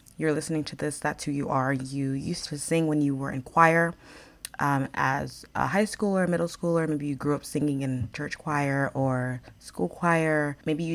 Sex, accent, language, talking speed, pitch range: female, American, English, 205 wpm, 135-170 Hz